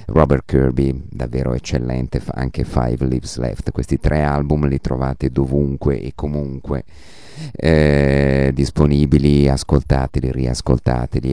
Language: Italian